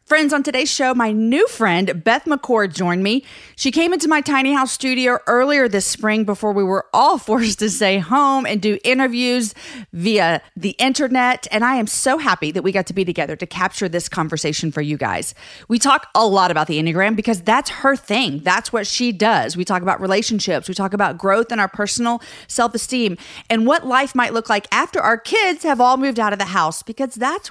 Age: 40-59